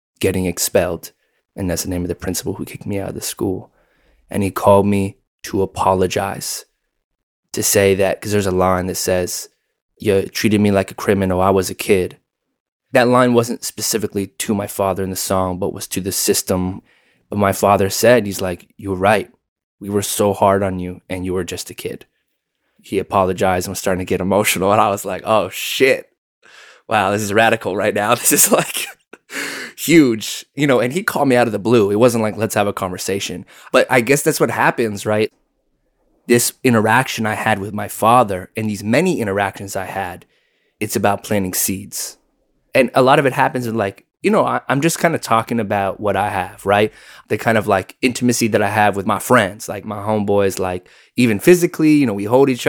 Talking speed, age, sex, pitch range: 210 wpm, 20-39, male, 95-115 Hz